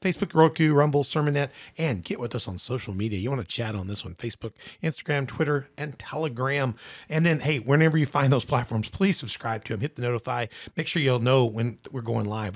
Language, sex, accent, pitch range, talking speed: English, male, American, 110-145 Hz, 220 wpm